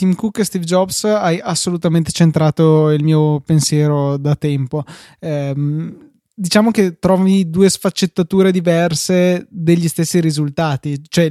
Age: 20-39